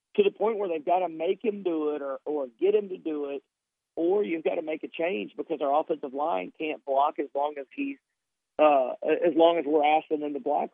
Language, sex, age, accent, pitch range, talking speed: English, male, 50-69, American, 145-170 Hz, 245 wpm